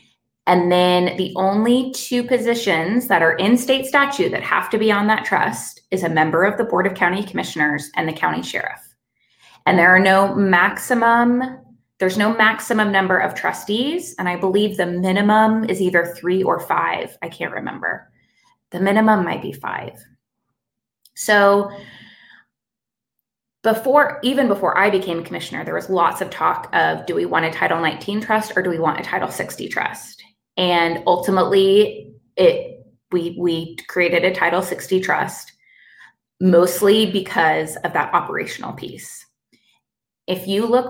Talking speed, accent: 155 wpm, American